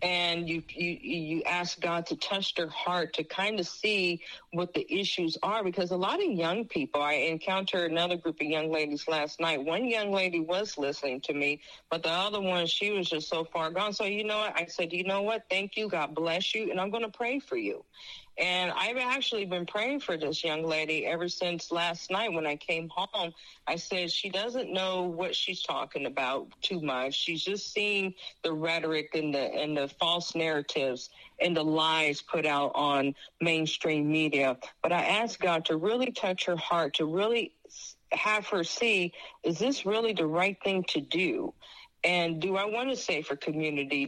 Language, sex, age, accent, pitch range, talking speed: English, female, 40-59, American, 160-200 Hz, 200 wpm